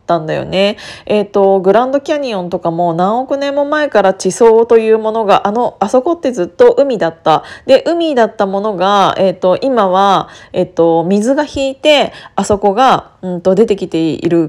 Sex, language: female, Japanese